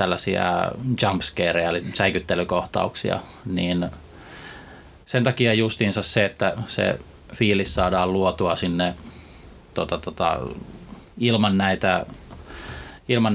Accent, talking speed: native, 90 wpm